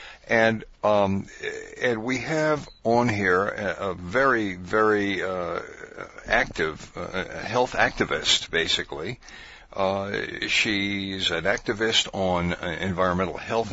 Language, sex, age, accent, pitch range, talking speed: English, male, 60-79, American, 95-115 Hz, 100 wpm